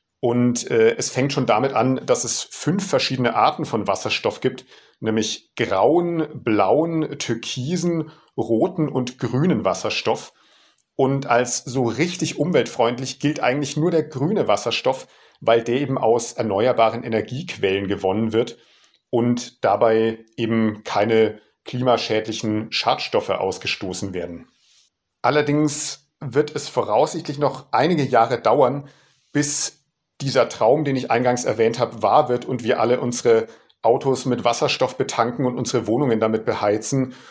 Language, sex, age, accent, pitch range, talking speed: German, male, 50-69, German, 110-135 Hz, 130 wpm